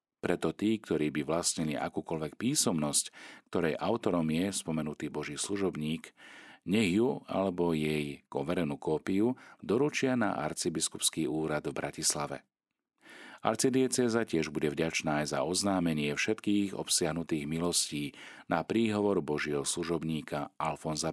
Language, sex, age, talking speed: Slovak, male, 40-59, 115 wpm